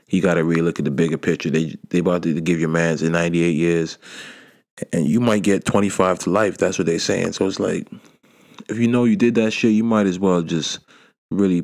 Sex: male